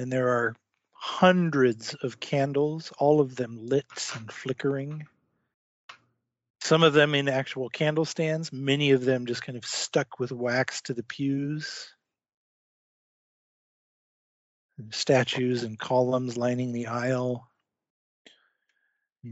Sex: male